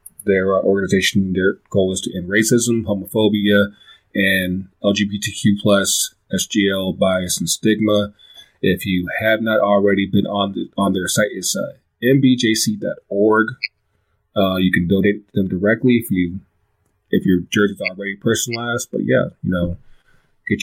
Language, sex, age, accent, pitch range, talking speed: English, male, 30-49, American, 95-110 Hz, 140 wpm